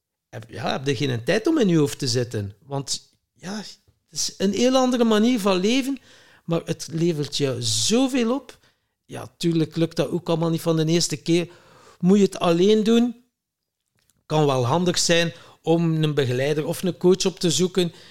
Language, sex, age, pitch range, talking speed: Dutch, male, 50-69, 145-190 Hz, 185 wpm